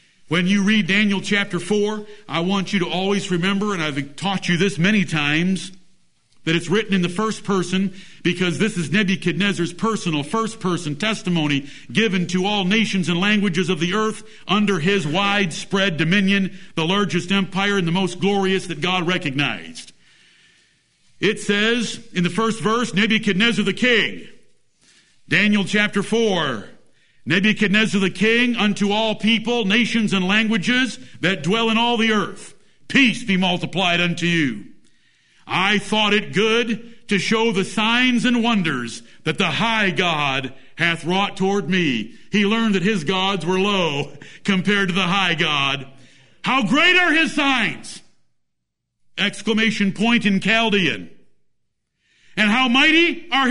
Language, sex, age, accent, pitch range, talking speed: English, male, 50-69, American, 180-215 Hz, 150 wpm